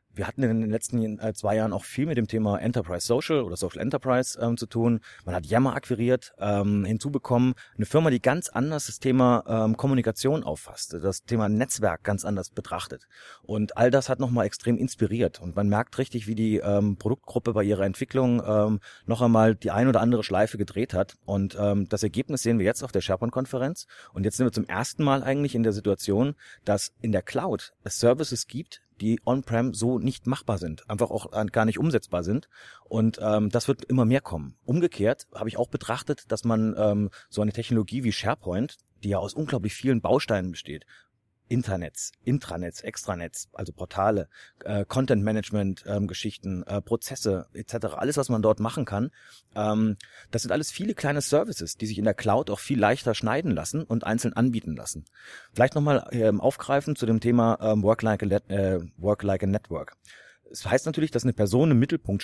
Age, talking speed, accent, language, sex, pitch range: 30-49, 195 wpm, German, German, male, 105-125 Hz